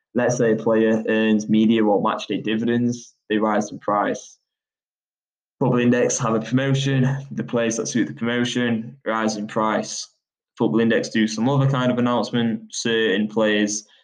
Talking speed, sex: 160 wpm, male